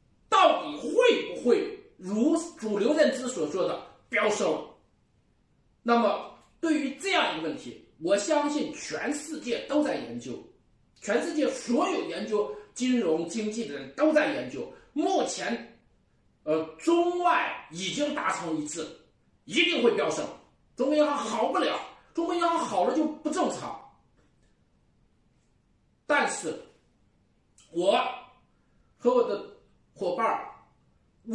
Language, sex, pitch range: Chinese, male, 240-335 Hz